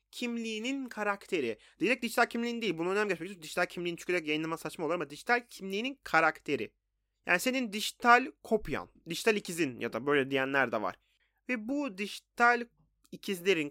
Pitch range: 160-250 Hz